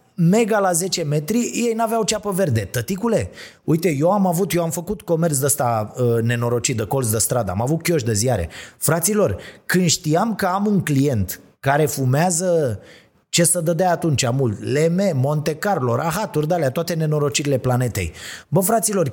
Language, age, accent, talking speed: Romanian, 30-49, native, 170 wpm